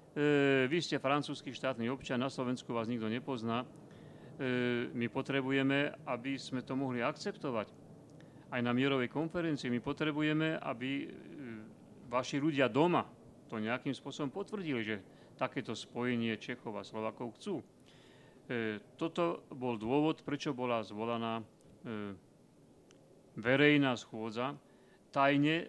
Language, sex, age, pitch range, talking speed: Slovak, male, 40-59, 120-145 Hz, 120 wpm